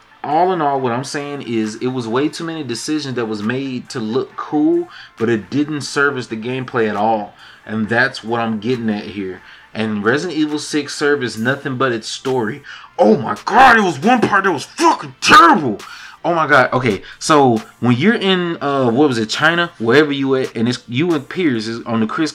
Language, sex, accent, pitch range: English, male, American, 115-155 Hz